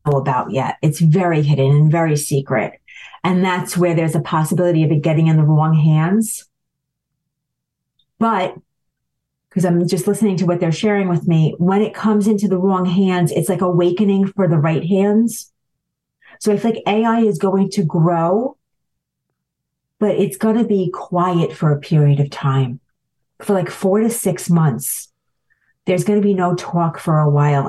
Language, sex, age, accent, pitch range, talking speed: English, female, 40-59, American, 150-185 Hz, 175 wpm